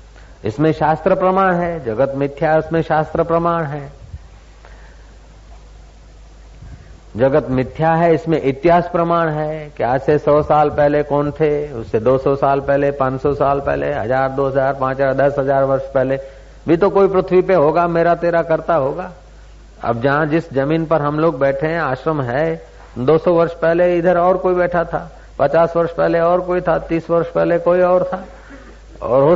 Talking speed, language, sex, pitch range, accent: 125 wpm, Hindi, male, 140-175 Hz, native